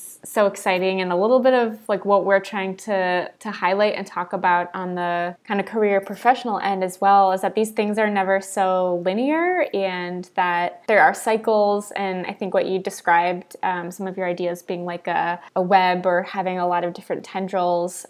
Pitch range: 185-220 Hz